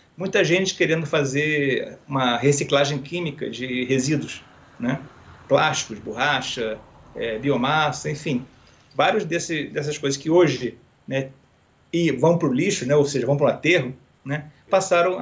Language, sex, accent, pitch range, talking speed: Portuguese, male, Brazilian, 140-175 Hz, 140 wpm